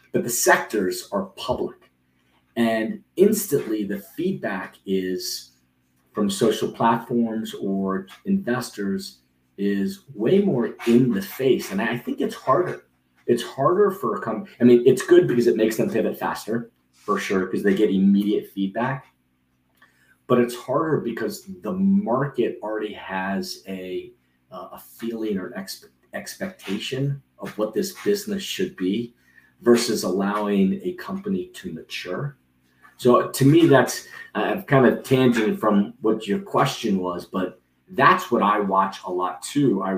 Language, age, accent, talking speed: English, 40-59, American, 145 wpm